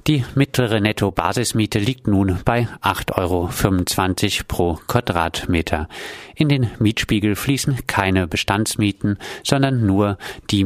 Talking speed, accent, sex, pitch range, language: 105 wpm, German, male, 90-115 Hz, German